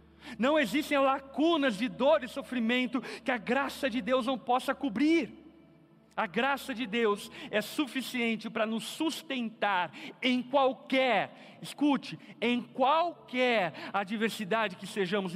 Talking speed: 125 wpm